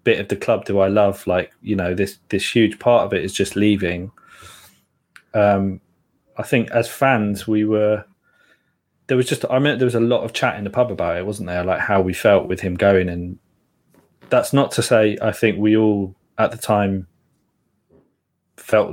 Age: 20-39